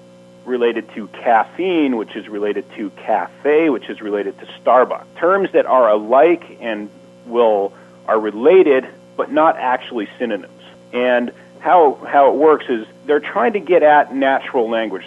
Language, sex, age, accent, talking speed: English, male, 40-59, American, 150 wpm